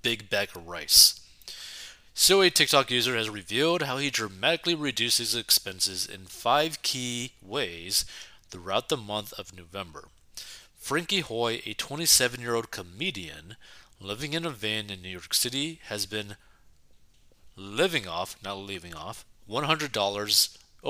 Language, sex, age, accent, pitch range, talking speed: English, male, 30-49, American, 100-140 Hz, 135 wpm